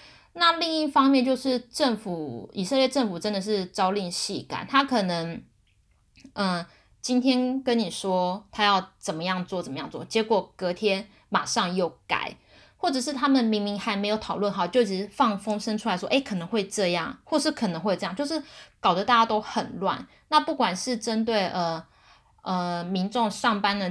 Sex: female